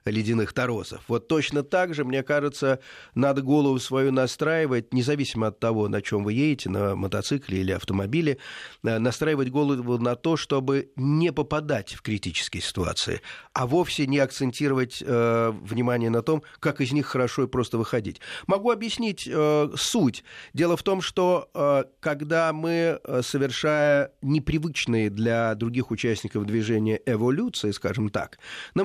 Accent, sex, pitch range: native, male, 115-150 Hz